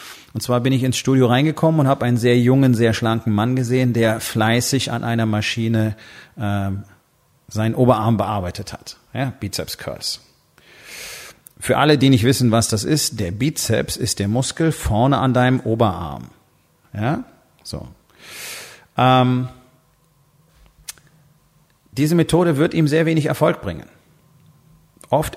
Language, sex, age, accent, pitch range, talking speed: German, male, 40-59, German, 110-135 Hz, 135 wpm